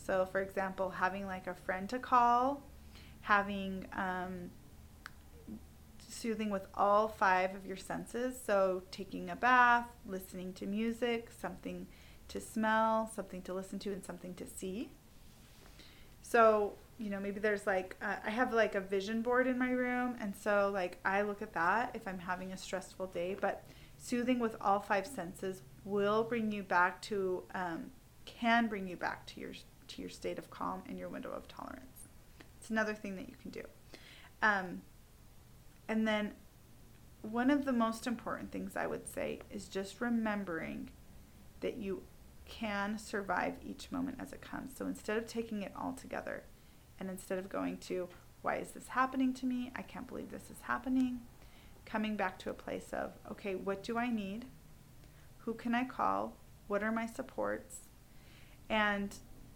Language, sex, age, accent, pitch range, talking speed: English, female, 30-49, American, 190-230 Hz, 170 wpm